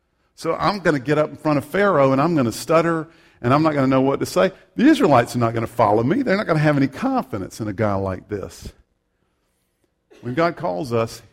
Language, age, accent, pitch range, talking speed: English, 50-69, American, 105-145 Hz, 255 wpm